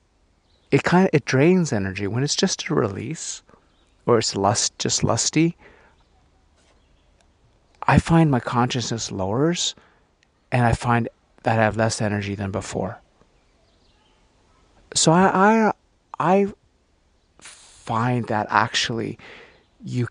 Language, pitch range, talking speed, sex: English, 100-130 Hz, 115 wpm, male